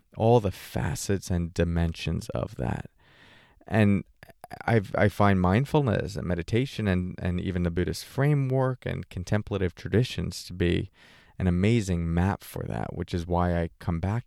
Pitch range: 90-110 Hz